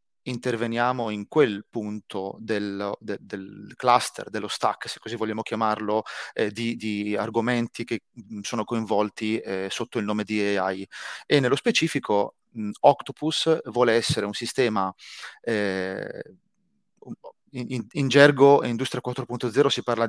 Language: Italian